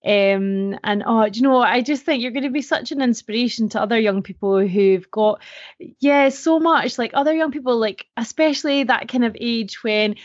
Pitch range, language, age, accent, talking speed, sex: 195-230 Hz, English, 20-39, British, 205 wpm, female